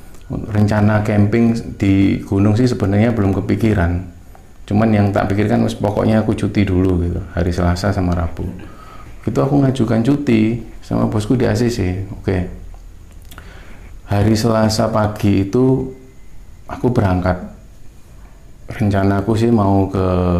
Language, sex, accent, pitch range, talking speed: Indonesian, male, native, 95-110 Hz, 125 wpm